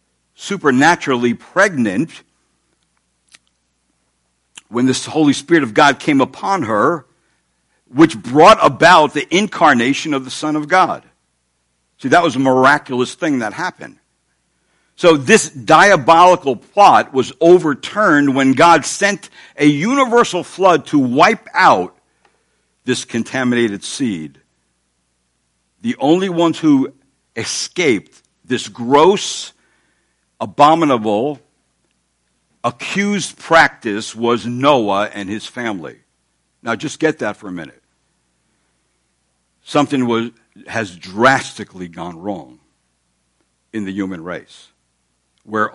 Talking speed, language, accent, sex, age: 105 wpm, English, American, male, 60-79